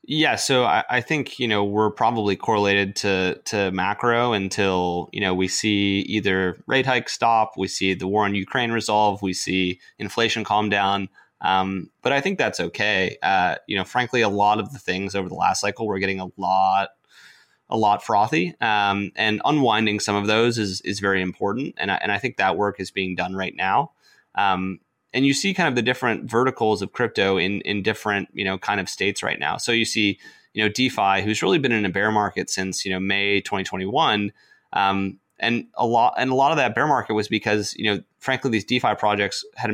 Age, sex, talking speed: 30-49, male, 215 wpm